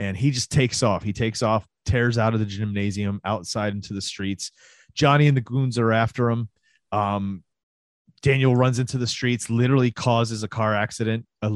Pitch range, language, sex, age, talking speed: 105-130 Hz, English, male, 30-49, 185 wpm